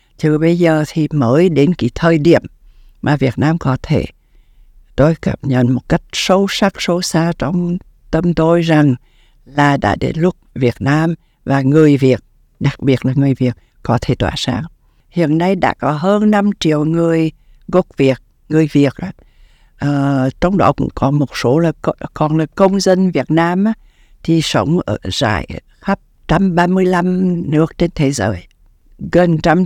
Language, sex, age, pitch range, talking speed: Vietnamese, female, 60-79, 140-170 Hz, 170 wpm